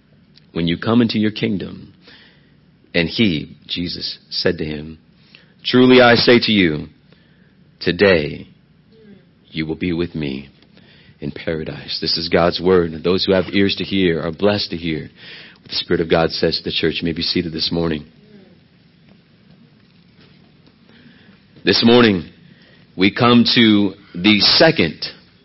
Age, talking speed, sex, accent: 50-69, 140 wpm, male, American